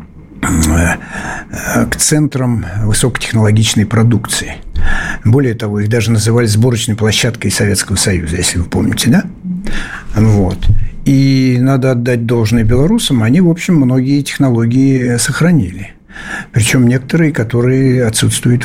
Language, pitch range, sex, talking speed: Russian, 100-130 Hz, male, 105 wpm